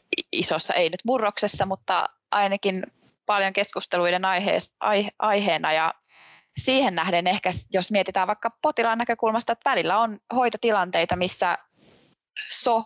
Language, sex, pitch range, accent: Finnish, female, 175-225 Hz, native